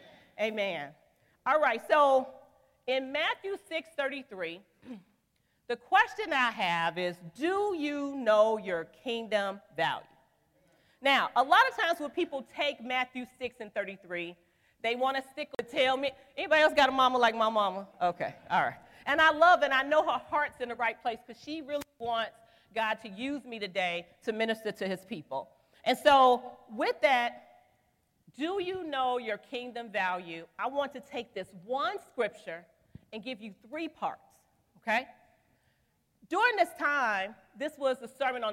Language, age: English, 40-59